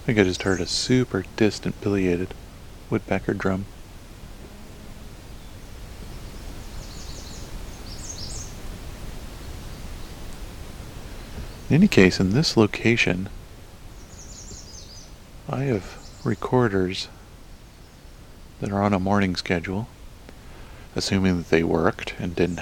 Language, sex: English, male